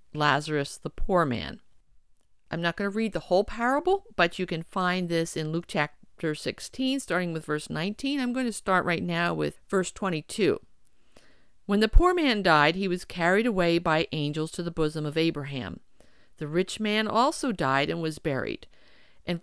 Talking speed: 180 wpm